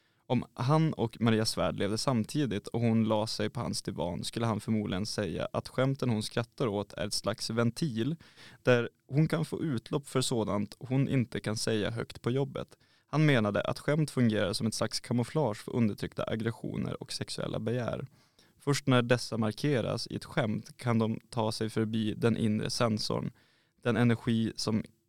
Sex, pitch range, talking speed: male, 110-130 Hz, 175 wpm